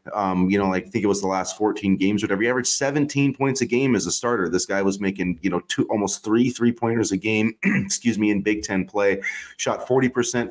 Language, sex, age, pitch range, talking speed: English, male, 30-49, 90-110 Hz, 245 wpm